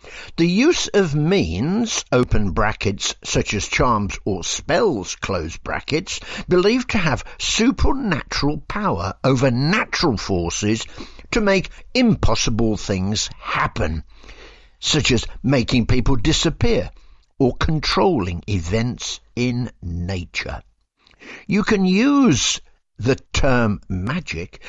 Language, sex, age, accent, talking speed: English, male, 60-79, British, 100 wpm